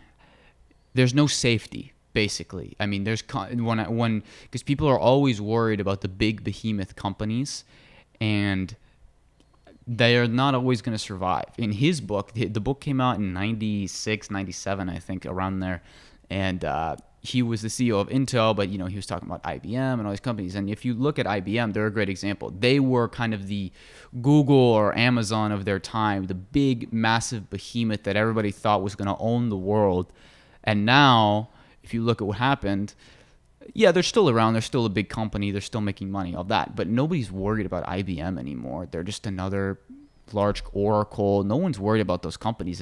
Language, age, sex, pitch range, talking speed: English, 20-39, male, 95-120 Hz, 185 wpm